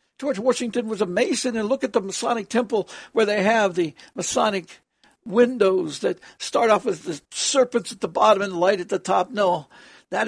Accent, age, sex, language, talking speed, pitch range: American, 60-79, male, English, 195 wpm, 180-240 Hz